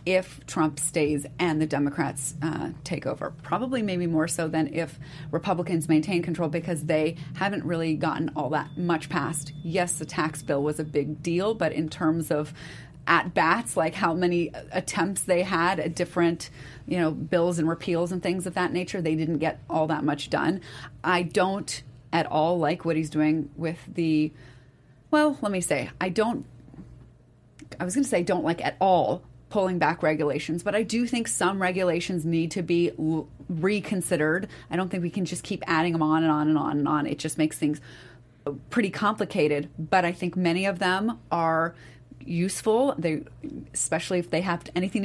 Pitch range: 155-180 Hz